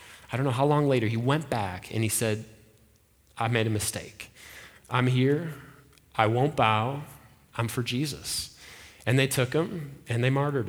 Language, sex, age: English, male, 30-49